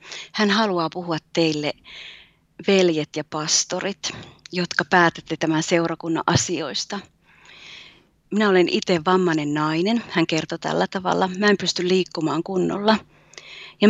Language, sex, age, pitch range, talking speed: Finnish, female, 30-49, 165-195 Hz, 115 wpm